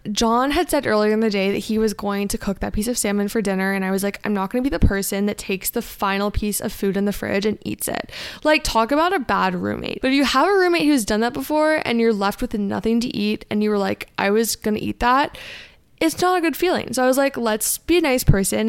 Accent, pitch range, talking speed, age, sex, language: American, 200-255 Hz, 290 wpm, 20-39, female, English